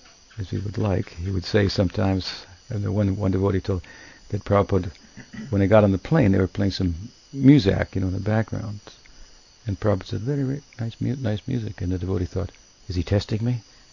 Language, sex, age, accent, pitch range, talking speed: English, male, 60-79, American, 90-110 Hz, 205 wpm